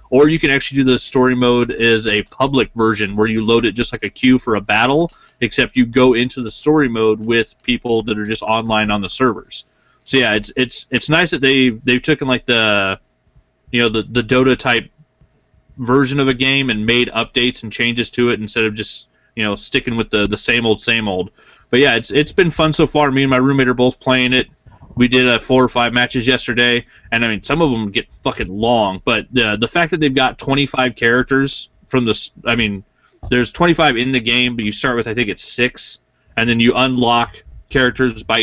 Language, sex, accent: English, male, American